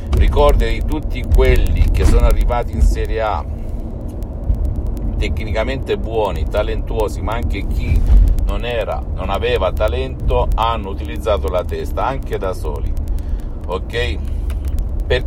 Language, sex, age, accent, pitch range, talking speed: Italian, male, 50-69, native, 75-100 Hz, 120 wpm